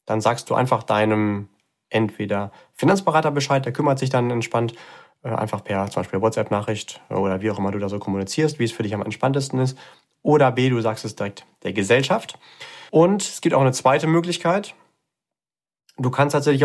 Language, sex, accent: German, male, German